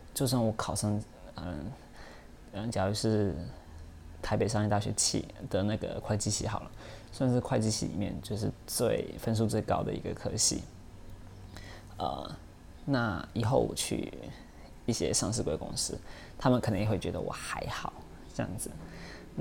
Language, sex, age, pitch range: Chinese, male, 20-39, 95-115 Hz